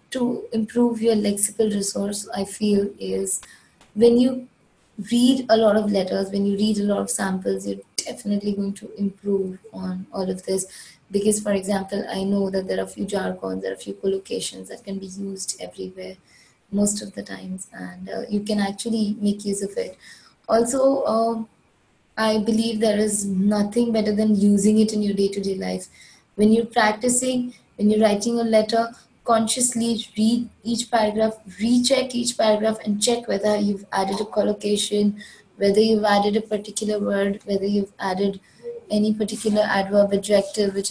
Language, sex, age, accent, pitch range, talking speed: English, female, 20-39, Indian, 195-225 Hz, 170 wpm